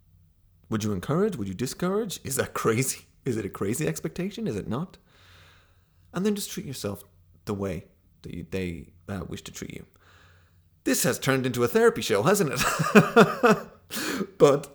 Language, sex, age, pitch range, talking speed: English, male, 30-49, 90-135 Hz, 170 wpm